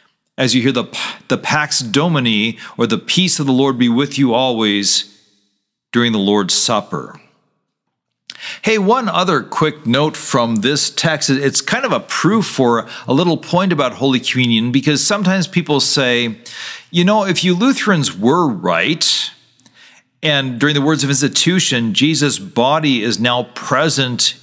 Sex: male